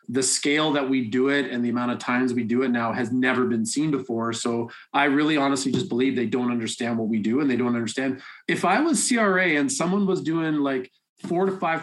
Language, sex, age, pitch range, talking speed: English, male, 30-49, 125-150 Hz, 245 wpm